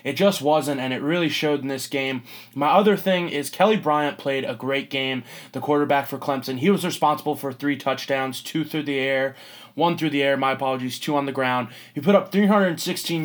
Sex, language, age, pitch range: male, English, 20-39, 135-170 Hz